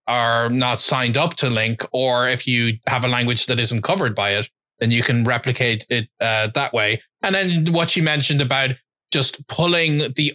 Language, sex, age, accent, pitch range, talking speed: English, male, 20-39, Irish, 125-155 Hz, 195 wpm